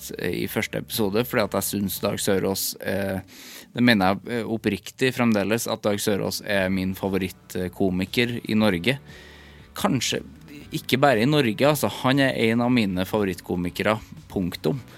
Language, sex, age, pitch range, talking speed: English, male, 20-39, 95-125 Hz, 150 wpm